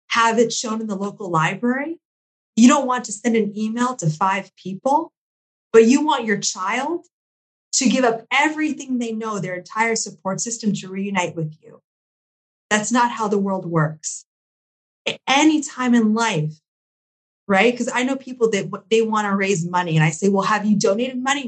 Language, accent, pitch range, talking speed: English, American, 190-245 Hz, 180 wpm